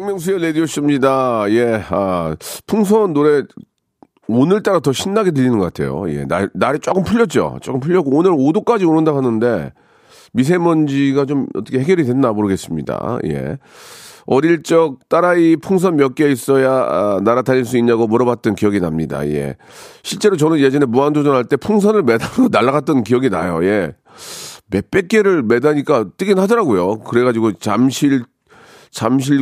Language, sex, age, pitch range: Korean, male, 40-59, 105-155 Hz